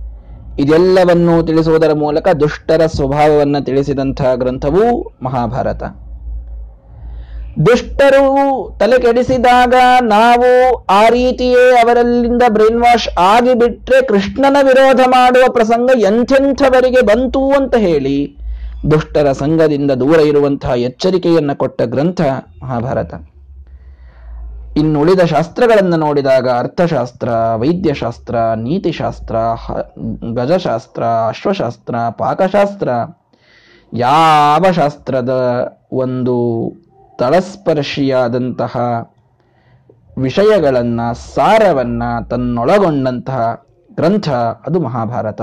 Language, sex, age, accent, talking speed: Kannada, male, 20-39, native, 70 wpm